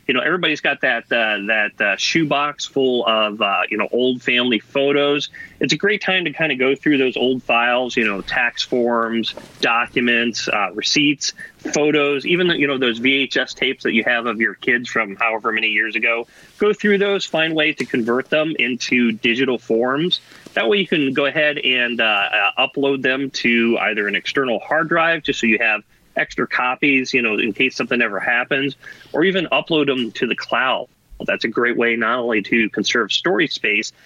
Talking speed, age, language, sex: 195 wpm, 30-49, English, male